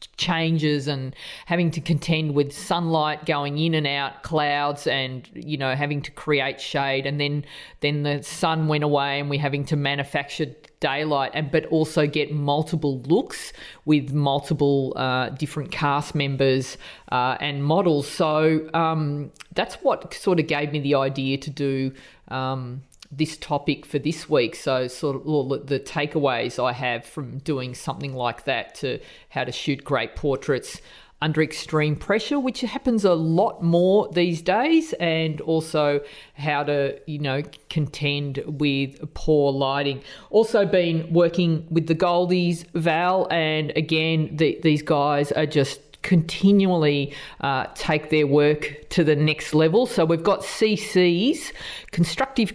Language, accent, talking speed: English, Australian, 150 wpm